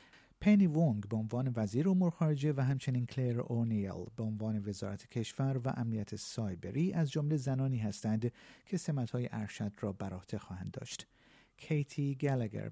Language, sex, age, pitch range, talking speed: Persian, male, 50-69, 105-145 Hz, 145 wpm